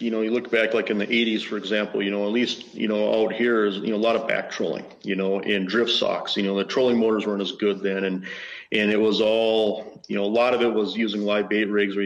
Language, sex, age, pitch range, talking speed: English, male, 40-59, 100-110 Hz, 290 wpm